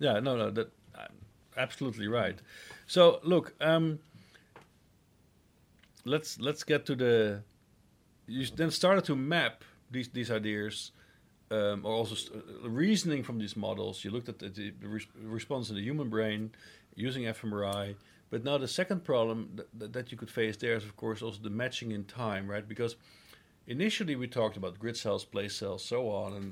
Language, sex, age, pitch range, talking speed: English, male, 50-69, 105-135 Hz, 165 wpm